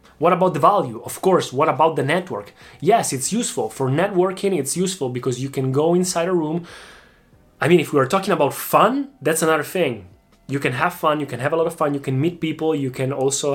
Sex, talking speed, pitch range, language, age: male, 235 wpm, 130-160 Hz, Italian, 20-39